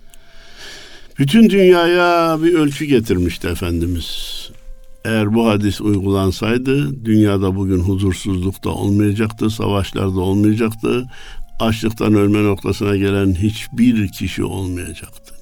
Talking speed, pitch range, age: 95 wpm, 95-115 Hz, 60-79